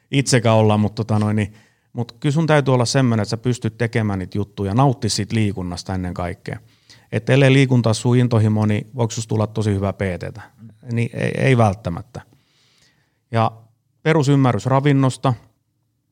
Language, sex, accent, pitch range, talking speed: Finnish, male, native, 105-130 Hz, 145 wpm